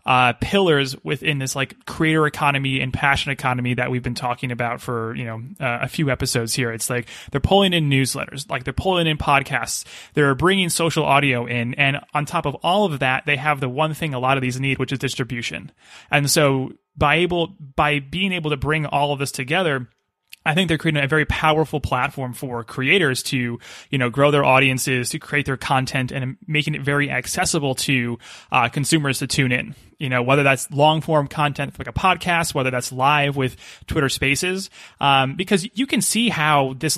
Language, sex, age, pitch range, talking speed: English, male, 30-49, 130-160 Hz, 205 wpm